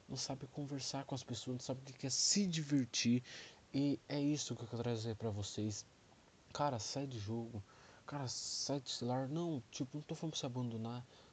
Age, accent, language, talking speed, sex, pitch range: 20-39, Brazilian, English, 200 wpm, male, 115-145 Hz